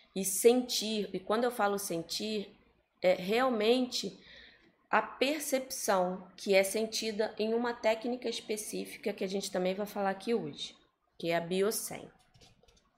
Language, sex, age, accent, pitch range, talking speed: Portuguese, female, 20-39, Brazilian, 165-225 Hz, 140 wpm